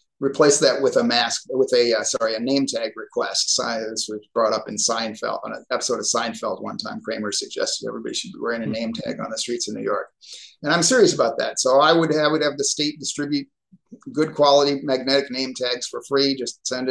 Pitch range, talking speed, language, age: 120-140 Hz, 225 wpm, English, 30-49